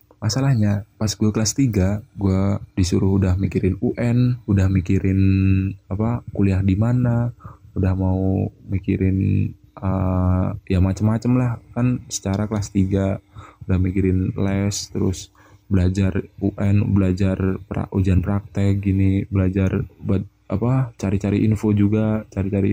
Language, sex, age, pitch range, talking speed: Indonesian, male, 20-39, 95-110 Hz, 120 wpm